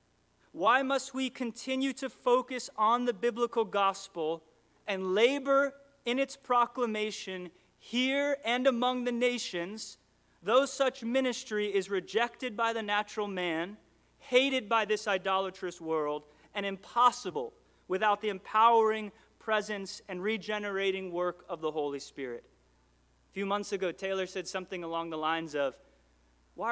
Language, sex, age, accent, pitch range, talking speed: English, male, 30-49, American, 180-245 Hz, 130 wpm